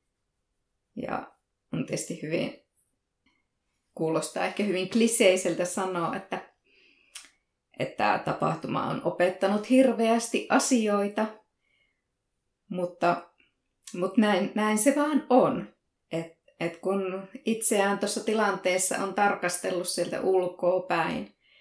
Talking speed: 95 wpm